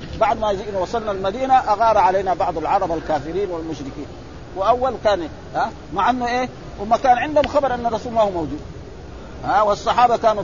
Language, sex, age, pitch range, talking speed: Arabic, male, 50-69, 170-230 Hz, 165 wpm